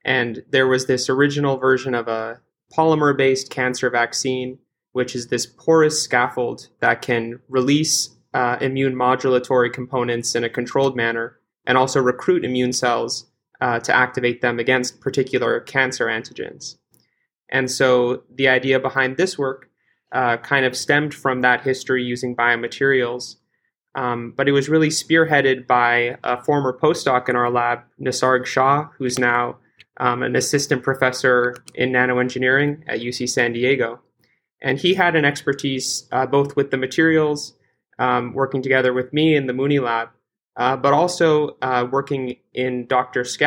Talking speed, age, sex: 150 wpm, 20-39, male